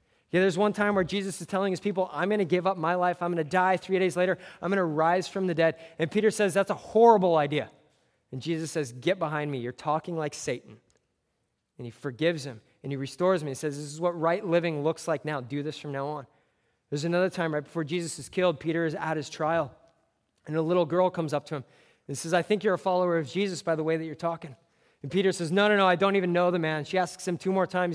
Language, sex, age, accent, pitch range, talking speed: English, male, 20-39, American, 145-175 Hz, 265 wpm